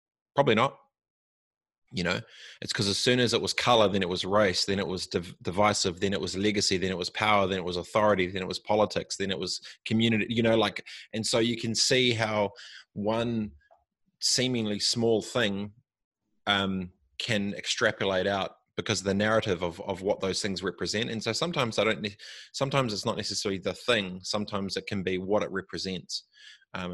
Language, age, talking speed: English, 20-39, 190 wpm